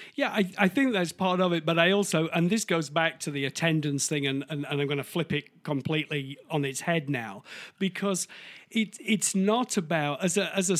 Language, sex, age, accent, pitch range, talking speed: English, male, 50-69, British, 150-200 Hz, 230 wpm